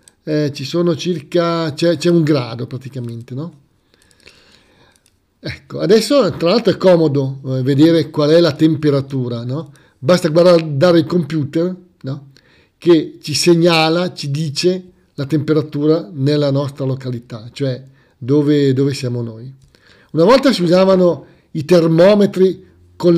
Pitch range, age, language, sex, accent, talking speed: 140-185 Hz, 50-69, Italian, male, native, 120 wpm